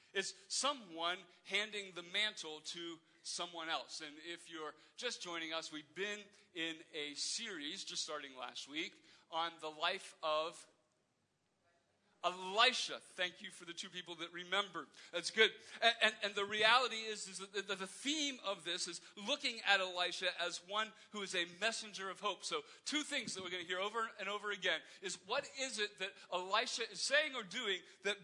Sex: male